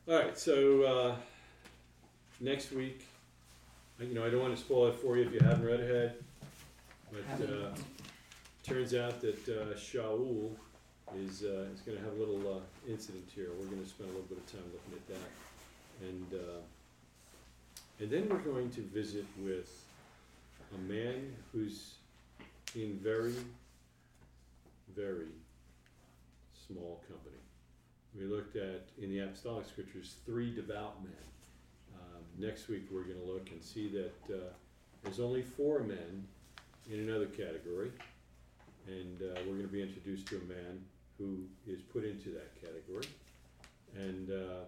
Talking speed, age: 150 wpm, 40-59